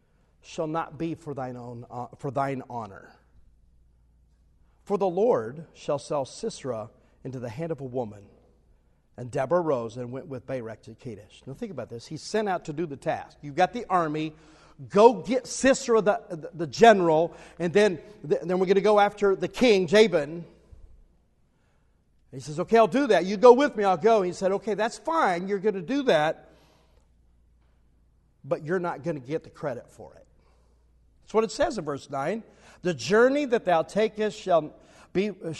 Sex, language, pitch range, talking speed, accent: male, English, 140-215 Hz, 185 wpm, American